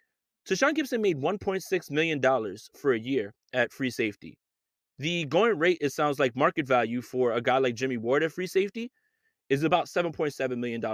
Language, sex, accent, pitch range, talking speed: English, male, American, 130-170 Hz, 180 wpm